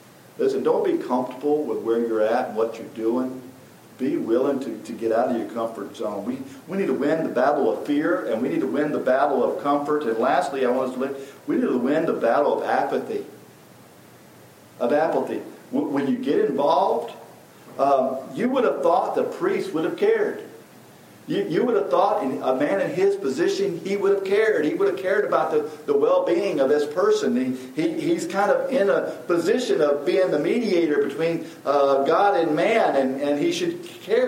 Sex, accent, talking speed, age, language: male, American, 205 wpm, 50-69, English